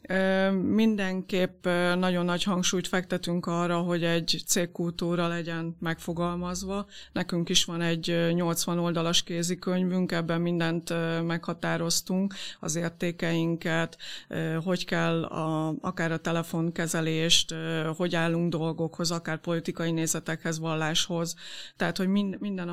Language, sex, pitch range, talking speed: Hungarian, female, 170-180 Hz, 100 wpm